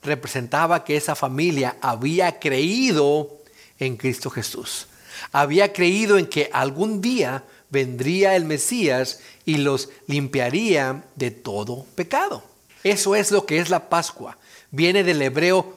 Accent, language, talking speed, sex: Mexican, Spanish, 130 wpm, male